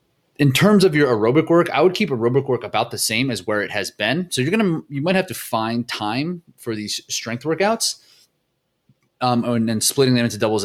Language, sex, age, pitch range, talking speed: English, male, 30-49, 105-130 Hz, 220 wpm